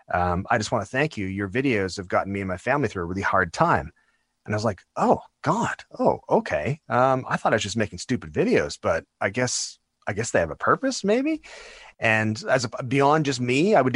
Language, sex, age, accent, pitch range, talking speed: English, male, 30-49, American, 100-130 Hz, 230 wpm